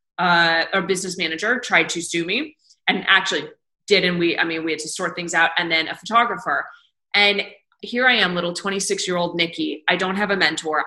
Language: English